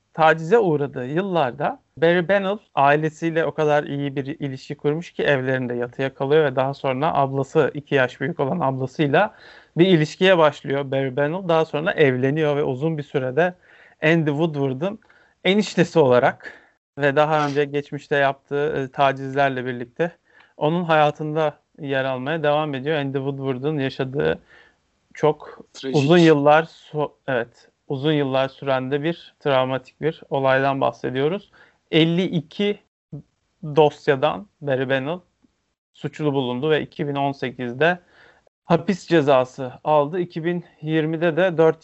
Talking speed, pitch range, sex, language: 120 wpm, 135-160 Hz, male, Turkish